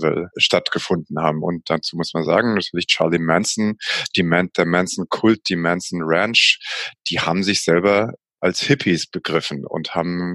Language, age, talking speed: German, 30-49, 135 wpm